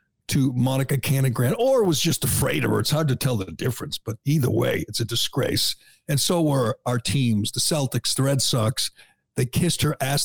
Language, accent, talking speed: English, American, 205 wpm